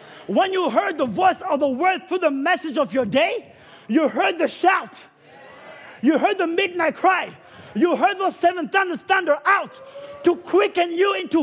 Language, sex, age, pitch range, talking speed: English, male, 30-49, 175-265 Hz, 180 wpm